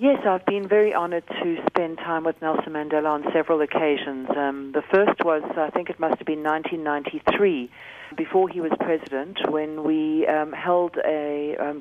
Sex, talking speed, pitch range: female, 180 wpm, 145-170 Hz